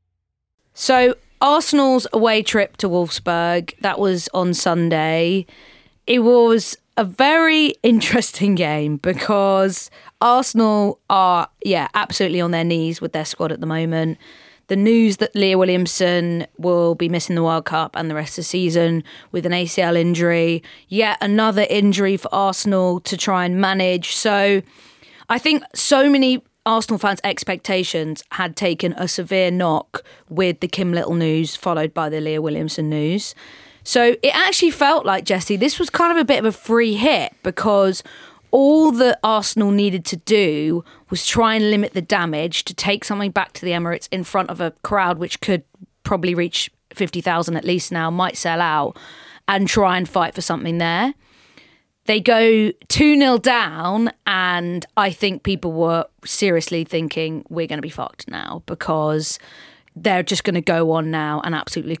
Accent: British